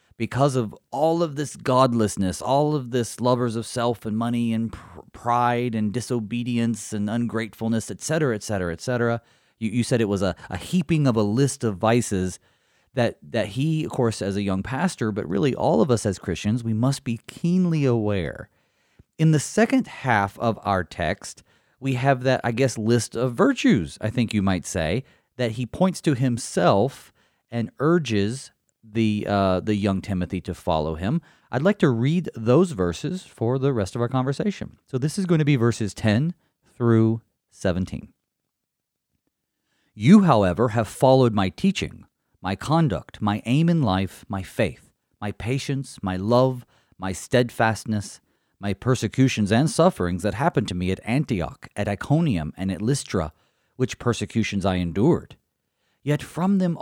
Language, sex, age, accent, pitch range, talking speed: English, male, 30-49, American, 100-135 Hz, 170 wpm